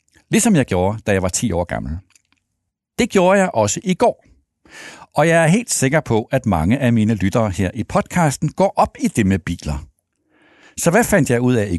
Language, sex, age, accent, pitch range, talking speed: Danish, male, 60-79, native, 105-165 Hz, 215 wpm